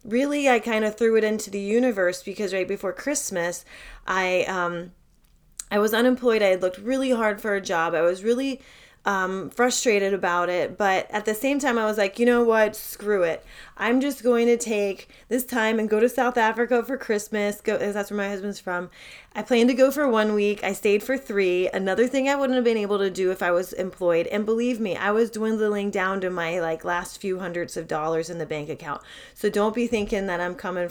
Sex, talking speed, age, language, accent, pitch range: female, 225 wpm, 30-49, English, American, 185-235 Hz